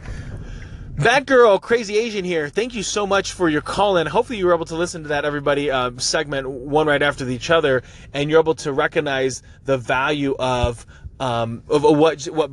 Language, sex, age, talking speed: English, male, 30-49, 195 wpm